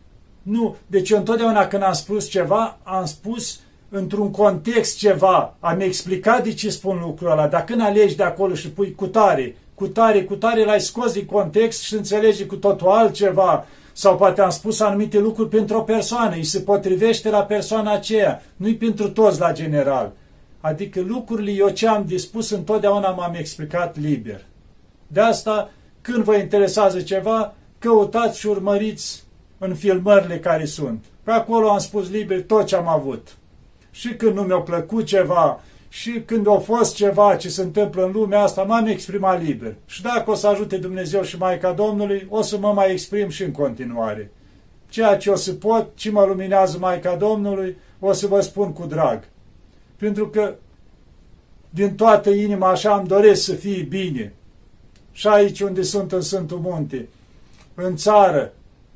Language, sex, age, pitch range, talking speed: Romanian, male, 40-59, 180-210 Hz, 170 wpm